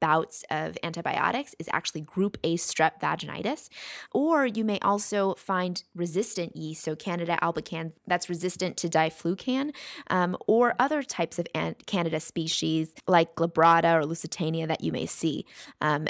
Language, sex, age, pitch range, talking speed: English, female, 20-39, 170-200 Hz, 140 wpm